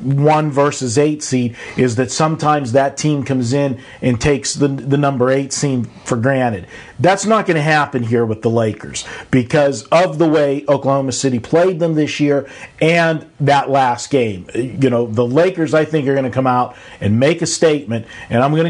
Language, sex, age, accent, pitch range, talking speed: English, male, 50-69, American, 130-155 Hz, 195 wpm